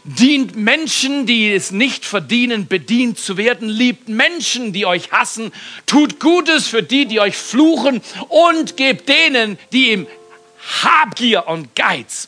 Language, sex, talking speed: German, male, 140 wpm